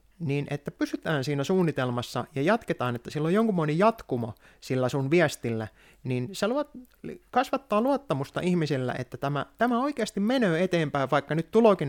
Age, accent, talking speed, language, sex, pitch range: 30-49, native, 155 wpm, Finnish, male, 125-185 Hz